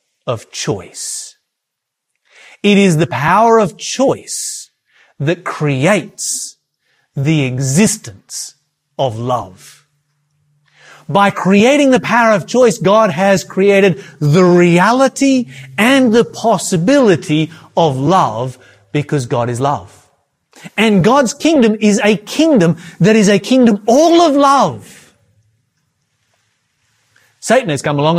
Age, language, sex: 30-49, English, male